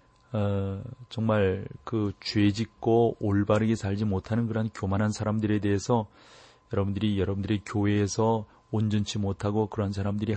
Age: 40-59